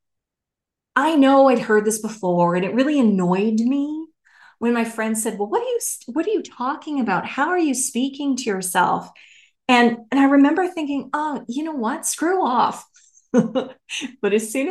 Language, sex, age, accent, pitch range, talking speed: English, female, 30-49, American, 205-270 Hz, 180 wpm